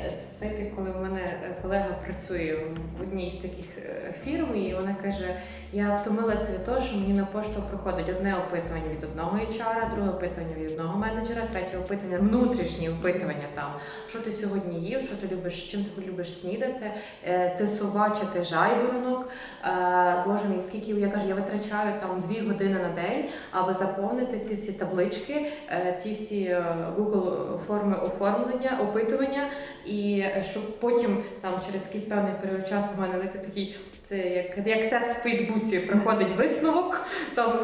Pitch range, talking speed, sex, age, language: 185-240 Hz, 150 wpm, female, 20-39, Ukrainian